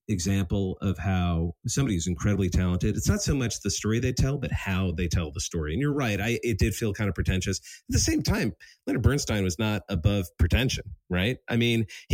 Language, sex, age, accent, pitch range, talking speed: English, male, 40-59, American, 90-115 Hz, 215 wpm